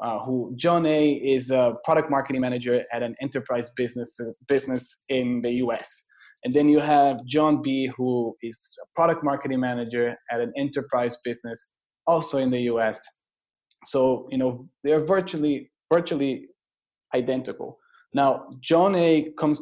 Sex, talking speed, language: male, 150 wpm, English